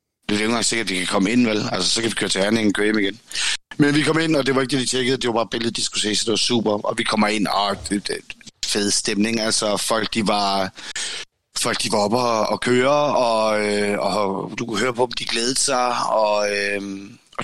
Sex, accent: male, native